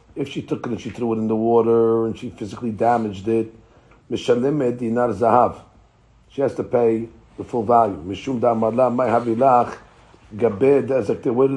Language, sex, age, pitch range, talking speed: English, male, 50-69, 110-130 Hz, 130 wpm